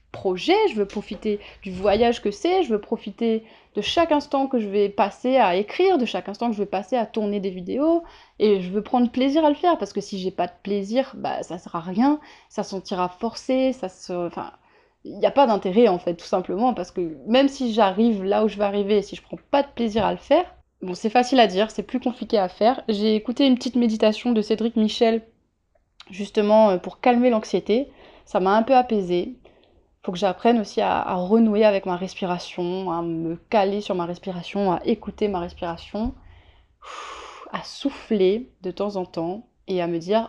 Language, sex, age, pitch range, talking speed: French, female, 20-39, 195-240 Hz, 210 wpm